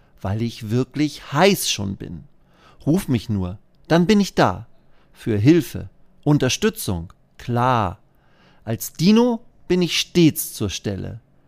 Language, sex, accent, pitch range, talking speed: German, male, German, 105-155 Hz, 125 wpm